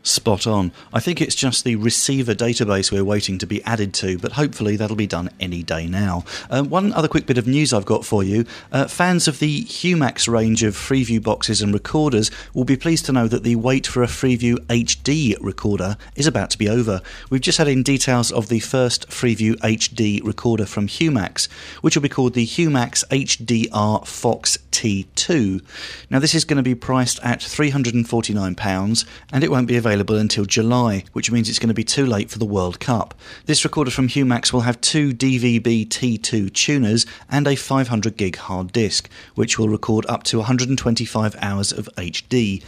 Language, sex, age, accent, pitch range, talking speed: English, male, 40-59, British, 105-130 Hz, 195 wpm